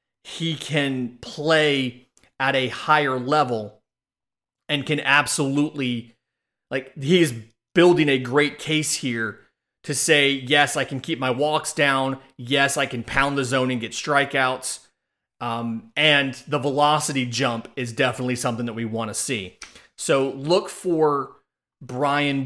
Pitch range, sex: 125-155 Hz, male